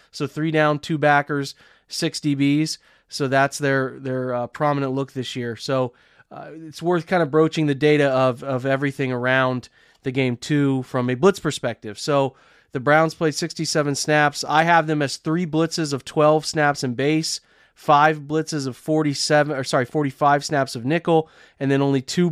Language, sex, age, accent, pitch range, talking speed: English, male, 30-49, American, 130-155 Hz, 180 wpm